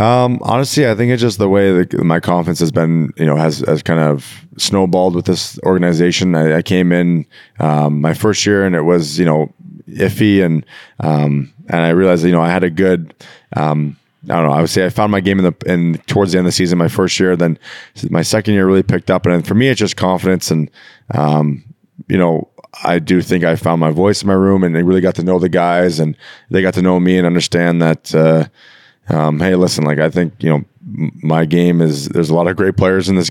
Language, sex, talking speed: English, male, 245 wpm